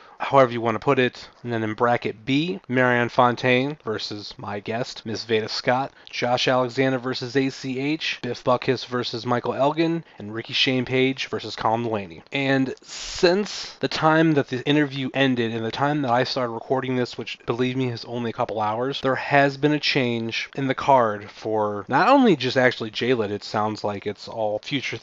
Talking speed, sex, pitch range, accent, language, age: 190 wpm, male, 115-135 Hz, American, English, 30-49